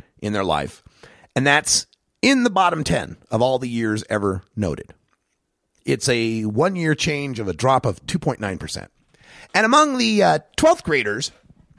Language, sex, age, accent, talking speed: English, male, 30-49, American, 155 wpm